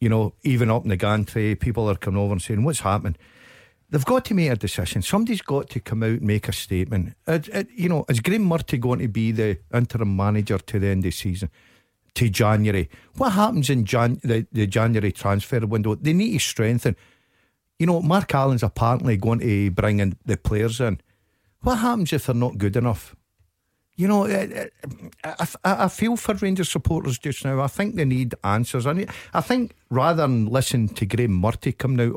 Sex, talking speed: male, 205 wpm